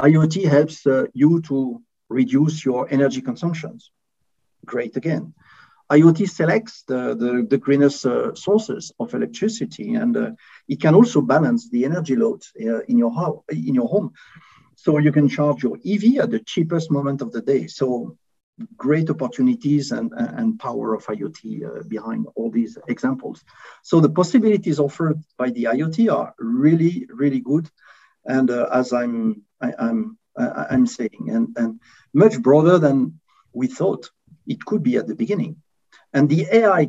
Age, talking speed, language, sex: 50-69, 160 wpm, English, male